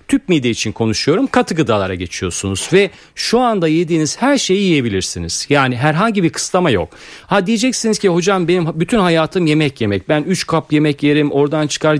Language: Turkish